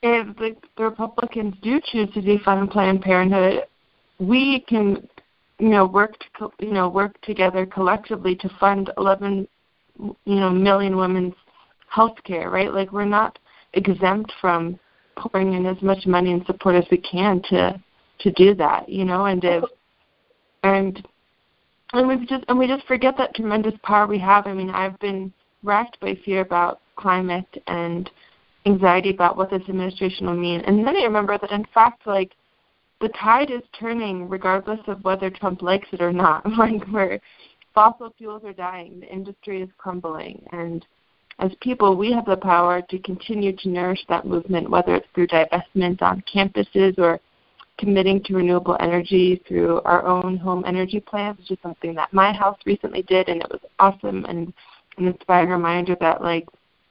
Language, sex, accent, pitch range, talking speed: English, female, American, 180-205 Hz, 170 wpm